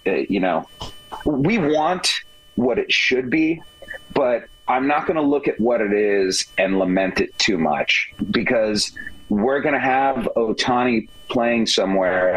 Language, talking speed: English, 150 wpm